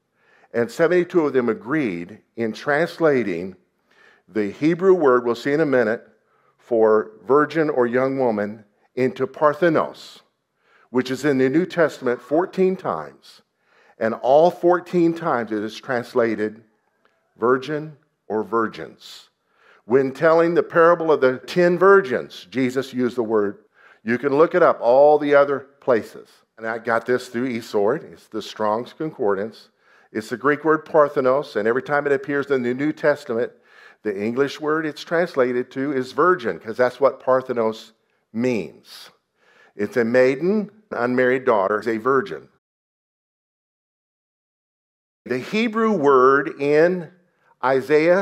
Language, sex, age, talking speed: English, male, 50-69, 140 wpm